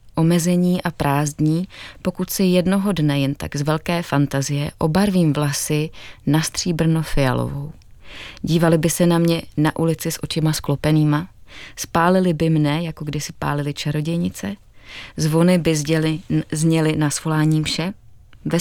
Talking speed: 130 wpm